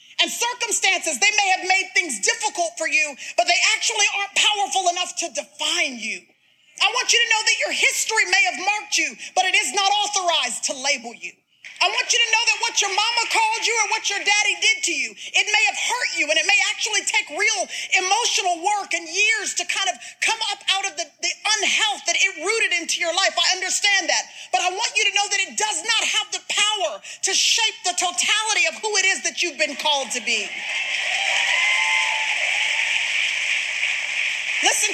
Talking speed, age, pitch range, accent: 205 wpm, 30-49, 340-425 Hz, American